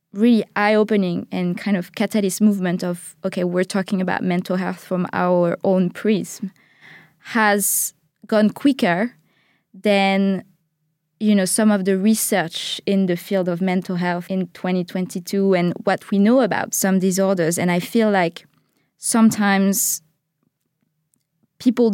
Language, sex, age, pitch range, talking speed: English, female, 20-39, 180-205 Hz, 135 wpm